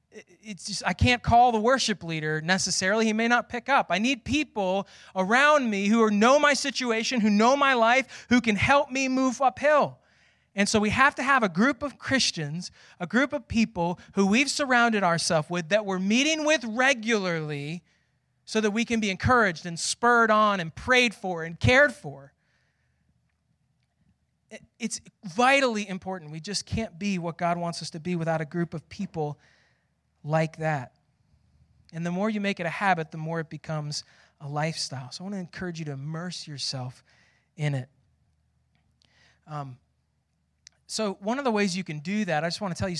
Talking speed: 185 wpm